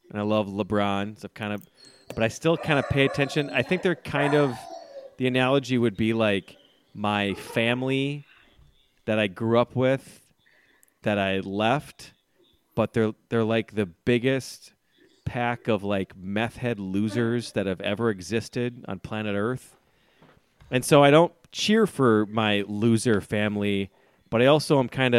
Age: 30-49